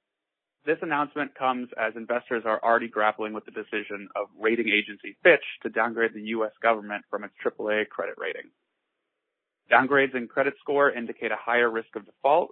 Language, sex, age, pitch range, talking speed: English, male, 20-39, 110-140 Hz, 170 wpm